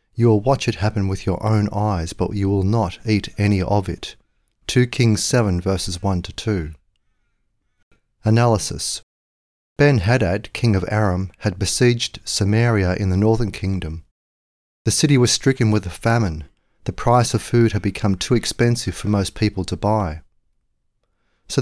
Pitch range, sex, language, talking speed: 95-115 Hz, male, English, 160 wpm